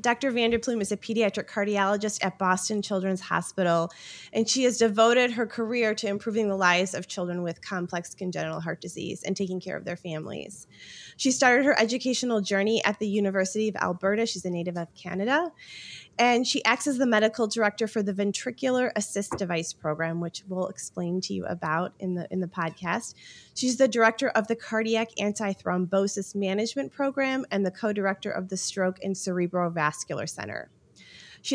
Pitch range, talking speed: 185-225 Hz, 170 wpm